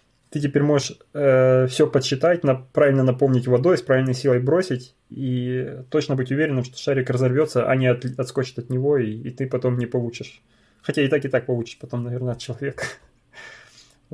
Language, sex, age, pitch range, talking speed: Russian, male, 20-39, 125-145 Hz, 180 wpm